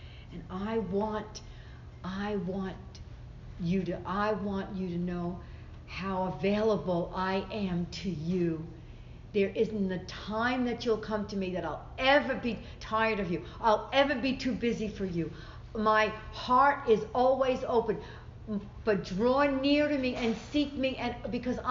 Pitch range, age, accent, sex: 175-225 Hz, 60-79, American, female